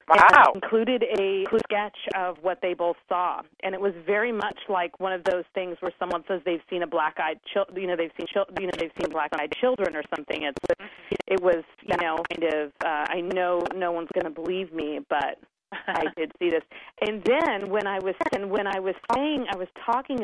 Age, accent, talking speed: 40-59, American, 220 wpm